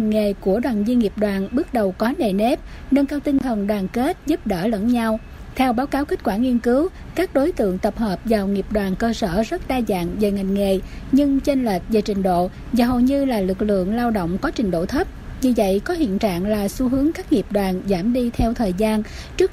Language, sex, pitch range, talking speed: Vietnamese, female, 210-265 Hz, 245 wpm